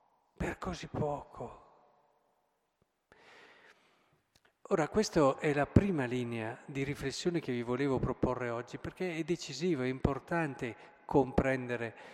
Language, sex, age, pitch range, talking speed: Italian, male, 50-69, 120-150 Hz, 110 wpm